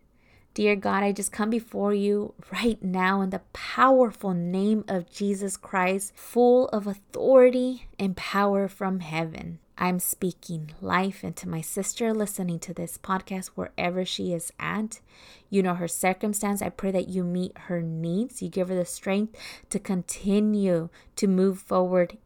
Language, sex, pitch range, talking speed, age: English, female, 175-200 Hz, 155 wpm, 20-39